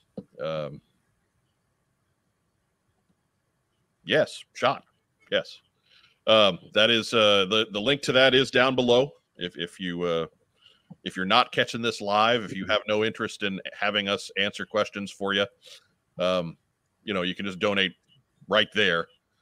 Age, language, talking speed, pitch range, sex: 40-59, English, 145 wpm, 100-130 Hz, male